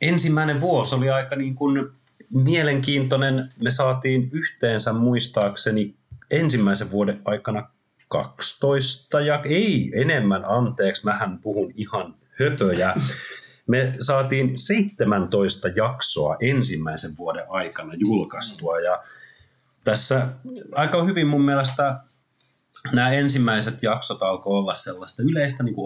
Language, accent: Finnish, native